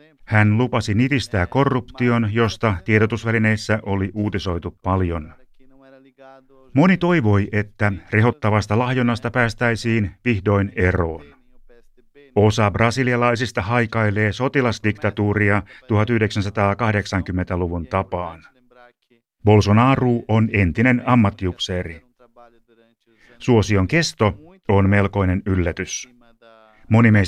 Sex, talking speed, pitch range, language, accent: male, 75 wpm, 100-125 Hz, Finnish, native